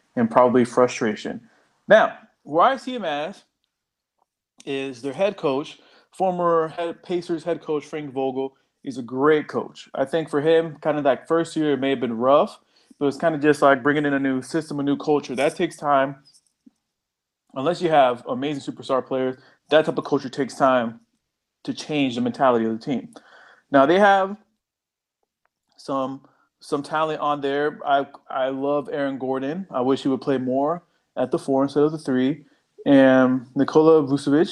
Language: English